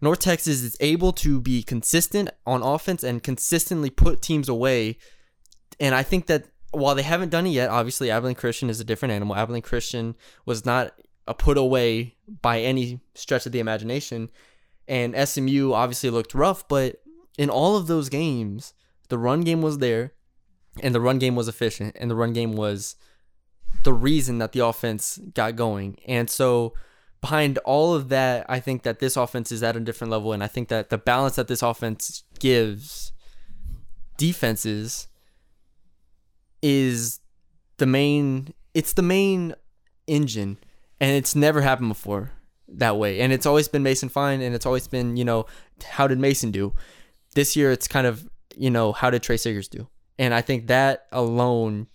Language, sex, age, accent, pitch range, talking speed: English, male, 20-39, American, 115-140 Hz, 175 wpm